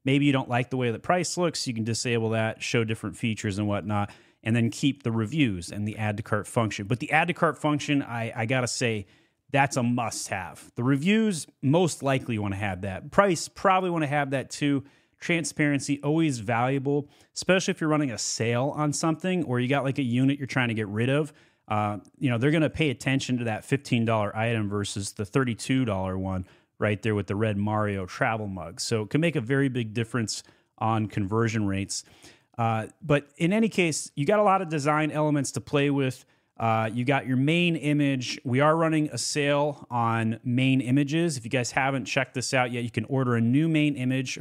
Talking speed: 220 wpm